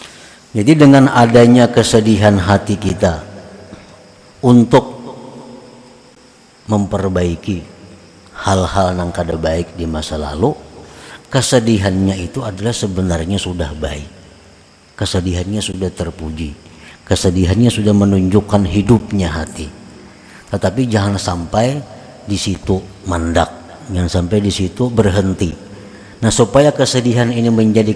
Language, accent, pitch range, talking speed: Indonesian, native, 90-110 Hz, 95 wpm